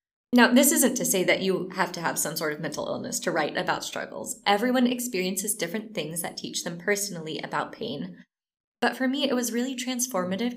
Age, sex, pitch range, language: 20-39, female, 180-240 Hz, English